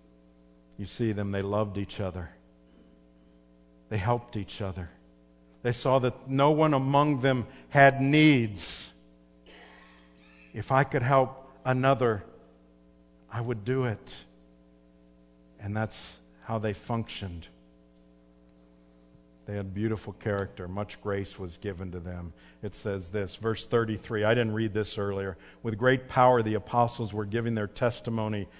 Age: 50-69